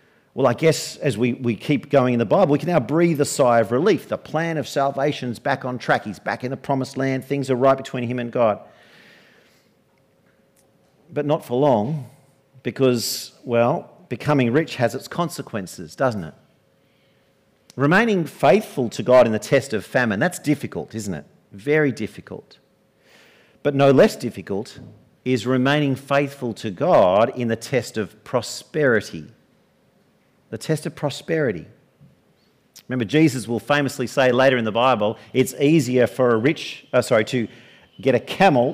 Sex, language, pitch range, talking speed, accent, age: male, English, 115-145 Hz, 165 wpm, Australian, 50-69